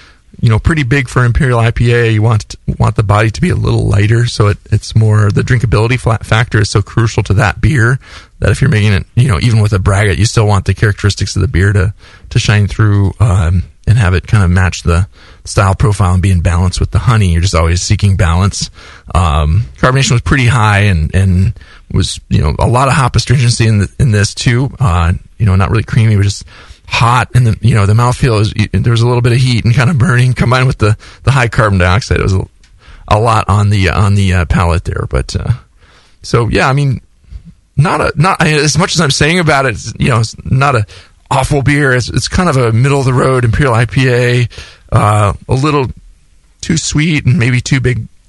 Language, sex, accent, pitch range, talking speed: English, male, American, 95-125 Hz, 230 wpm